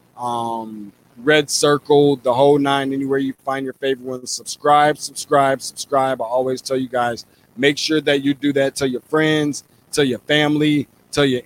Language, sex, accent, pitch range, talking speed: English, male, American, 130-150 Hz, 180 wpm